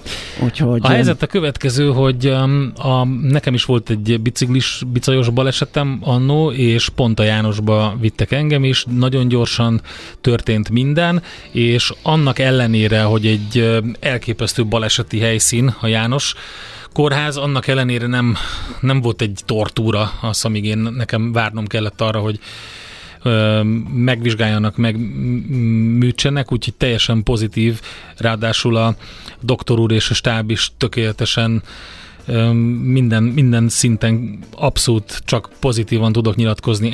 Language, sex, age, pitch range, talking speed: Hungarian, male, 30-49, 110-130 Hz, 120 wpm